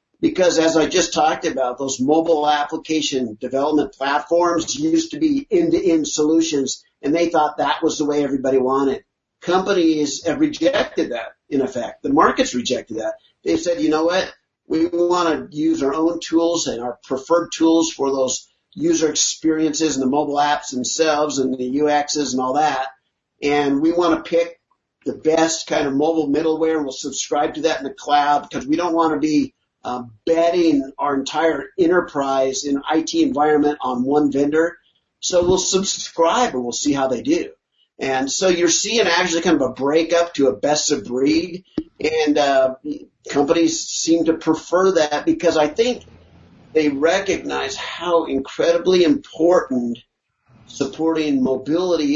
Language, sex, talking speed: English, male, 165 wpm